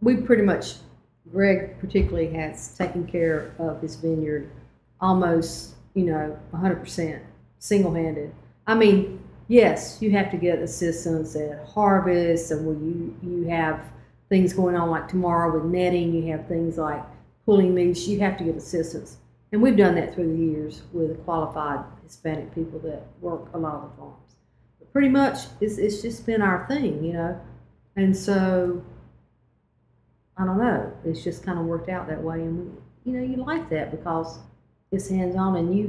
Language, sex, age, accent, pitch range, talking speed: English, female, 50-69, American, 160-205 Hz, 170 wpm